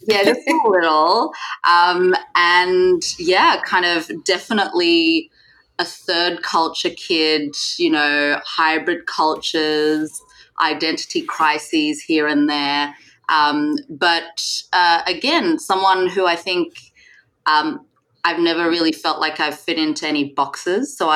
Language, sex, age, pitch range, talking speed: English, female, 20-39, 145-180 Hz, 120 wpm